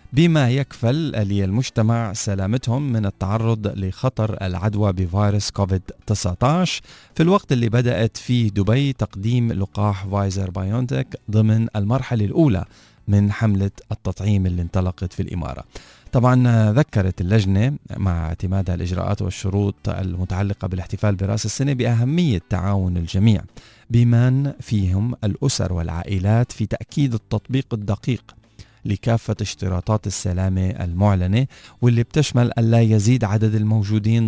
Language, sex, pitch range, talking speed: Arabic, male, 100-120 Hz, 110 wpm